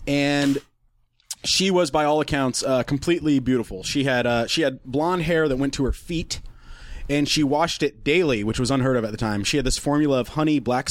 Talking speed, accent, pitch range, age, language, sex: 220 wpm, American, 115-145 Hz, 30-49, English, male